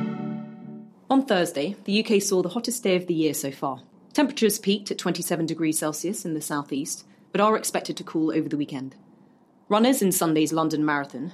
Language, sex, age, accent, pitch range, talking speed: English, female, 30-49, British, 155-205 Hz, 185 wpm